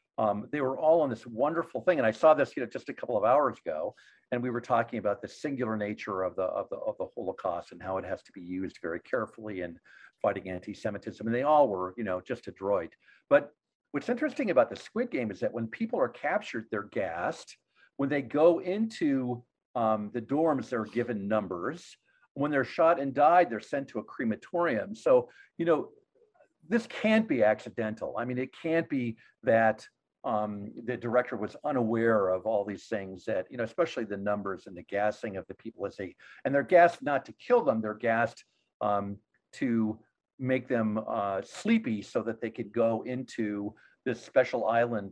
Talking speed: 200 wpm